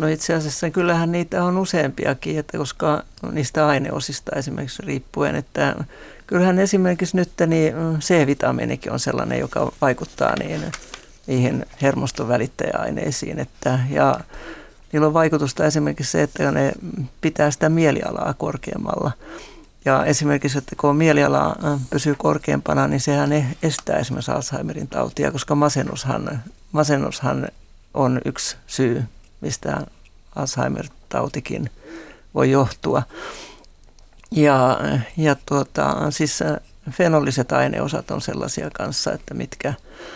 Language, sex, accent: Finnish, male, native